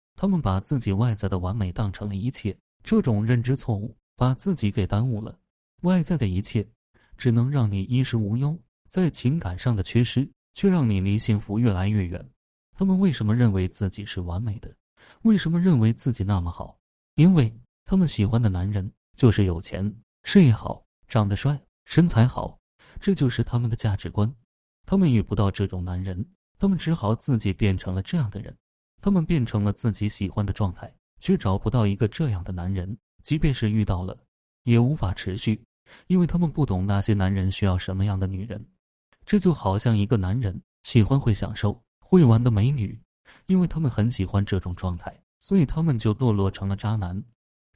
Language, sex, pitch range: Chinese, male, 100-130 Hz